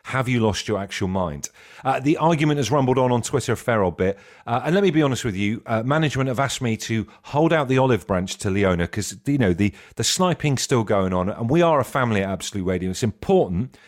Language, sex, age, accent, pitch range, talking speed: English, male, 40-59, British, 105-150 Hz, 250 wpm